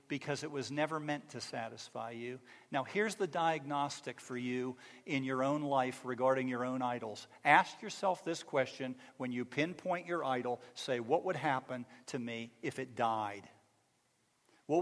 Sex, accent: male, American